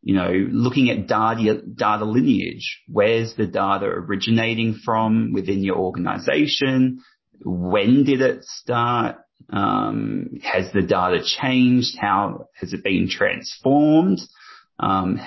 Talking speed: 120 wpm